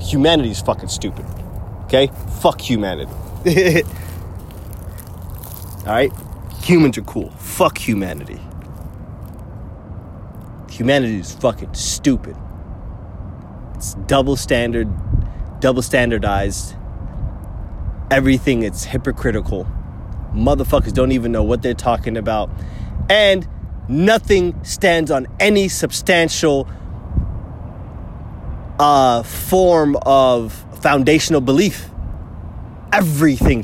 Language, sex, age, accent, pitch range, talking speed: English, male, 30-49, American, 95-140 Hz, 80 wpm